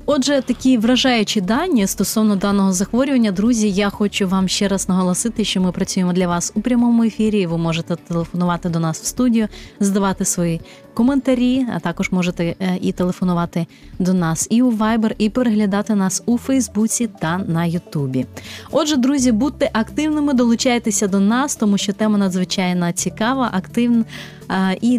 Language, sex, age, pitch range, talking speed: Ukrainian, female, 20-39, 190-235 Hz, 155 wpm